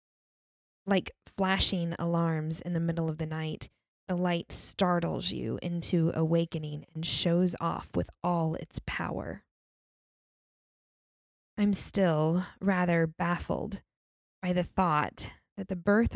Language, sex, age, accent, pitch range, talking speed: English, female, 20-39, American, 165-190 Hz, 120 wpm